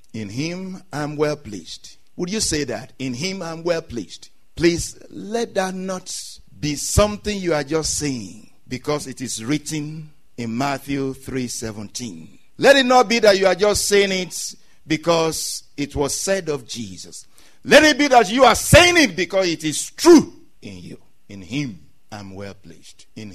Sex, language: male, English